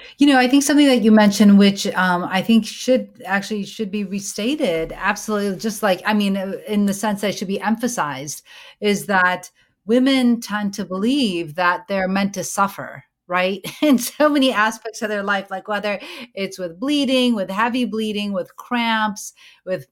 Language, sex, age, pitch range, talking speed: English, female, 30-49, 180-220 Hz, 180 wpm